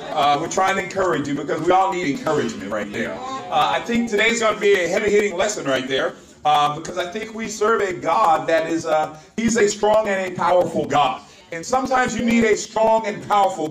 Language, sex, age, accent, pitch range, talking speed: English, male, 40-59, American, 165-215 Hz, 225 wpm